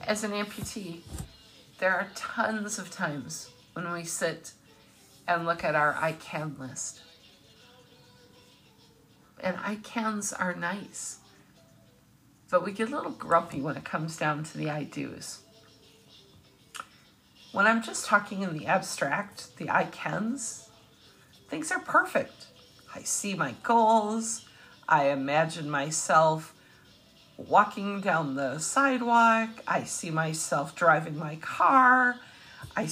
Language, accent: English, American